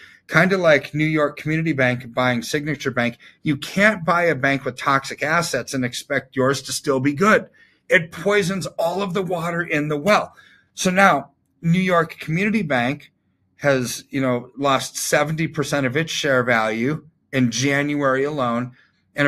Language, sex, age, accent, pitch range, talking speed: English, male, 40-59, American, 125-155 Hz, 165 wpm